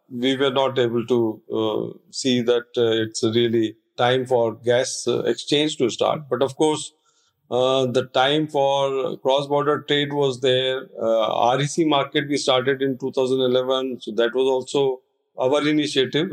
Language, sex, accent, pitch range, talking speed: English, male, Indian, 115-135 Hz, 155 wpm